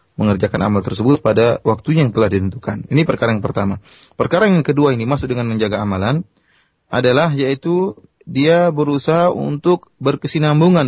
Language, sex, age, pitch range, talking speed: Malay, male, 30-49, 110-150 Hz, 145 wpm